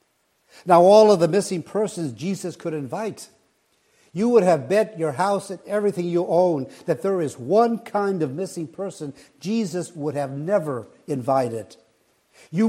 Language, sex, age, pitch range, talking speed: English, male, 60-79, 145-190 Hz, 155 wpm